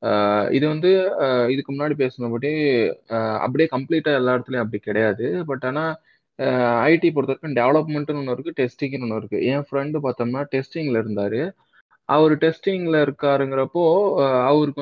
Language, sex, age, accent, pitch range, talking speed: Tamil, male, 20-39, native, 125-155 Hz, 120 wpm